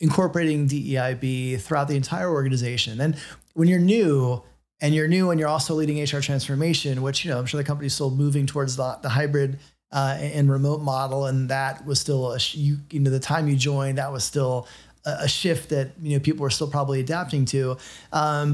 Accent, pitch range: American, 135-160 Hz